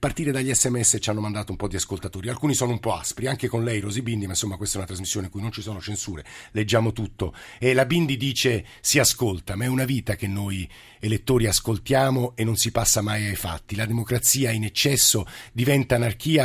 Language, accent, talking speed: Italian, native, 225 wpm